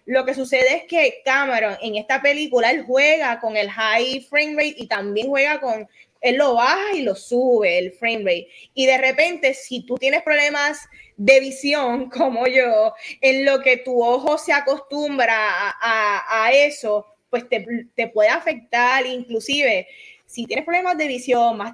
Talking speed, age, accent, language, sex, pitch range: 175 wpm, 20-39, American, Spanish, female, 230-290 Hz